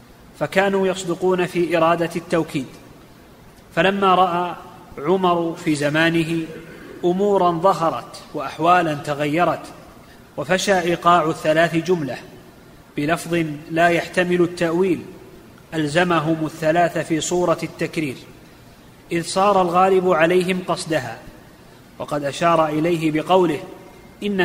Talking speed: 90 wpm